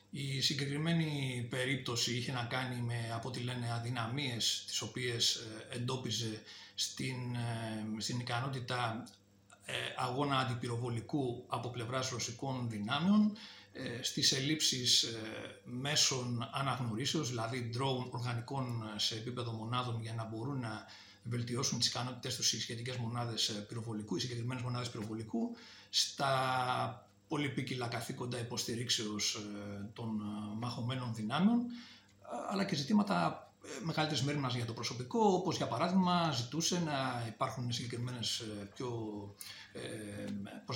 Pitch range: 115-135 Hz